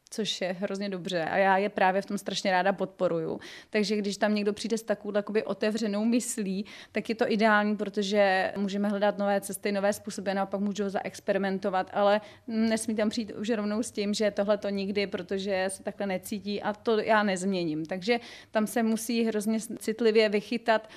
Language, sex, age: Czech, female, 30-49